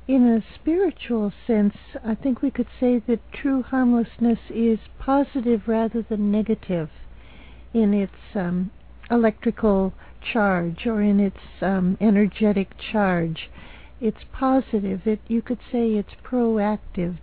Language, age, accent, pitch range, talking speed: English, 60-79, American, 215-255 Hz, 120 wpm